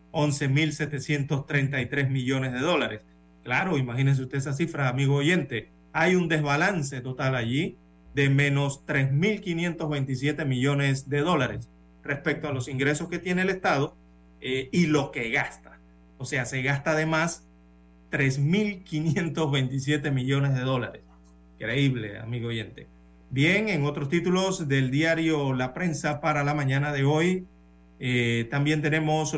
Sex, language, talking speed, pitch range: male, Spanish, 130 wpm, 130-155 Hz